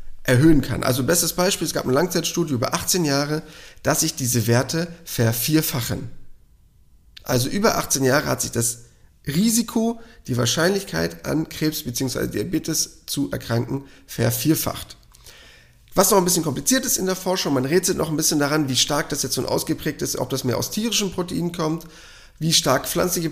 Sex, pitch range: male, 130-165 Hz